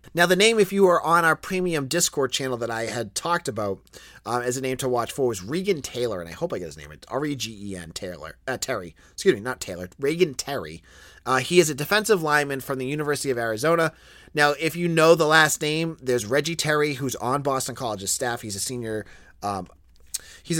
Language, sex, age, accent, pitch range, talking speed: English, male, 30-49, American, 100-160 Hz, 205 wpm